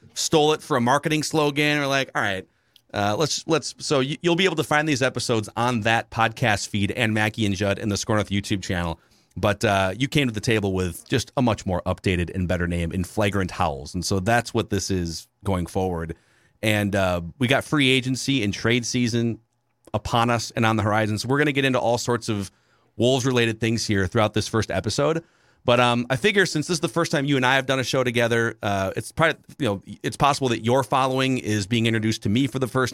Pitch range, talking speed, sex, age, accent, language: 100-130 Hz, 235 wpm, male, 30-49, American, English